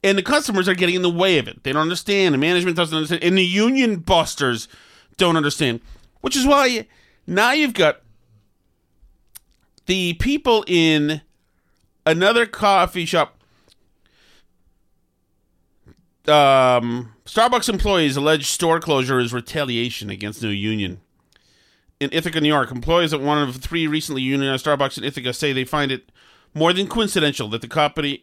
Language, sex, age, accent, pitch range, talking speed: English, male, 40-59, American, 115-180 Hz, 150 wpm